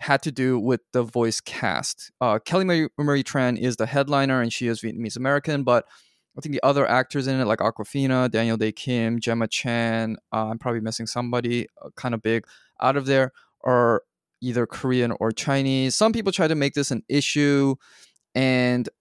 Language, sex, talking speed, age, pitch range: English, male, 190 wpm, 20-39, 115-140 Hz